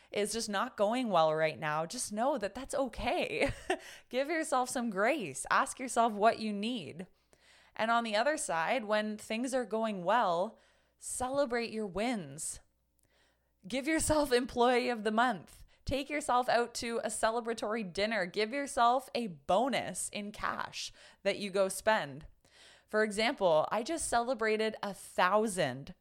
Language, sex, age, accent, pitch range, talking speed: English, female, 20-39, American, 170-235 Hz, 150 wpm